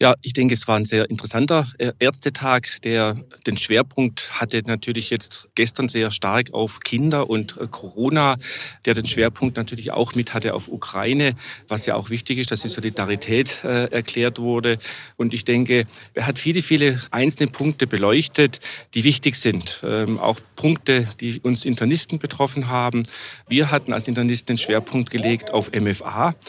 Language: German